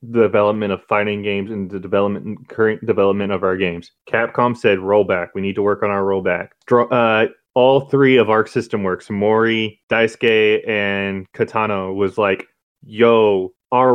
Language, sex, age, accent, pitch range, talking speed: English, male, 20-39, American, 100-120 Hz, 160 wpm